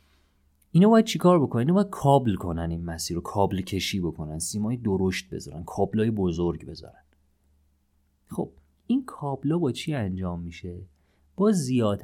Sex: male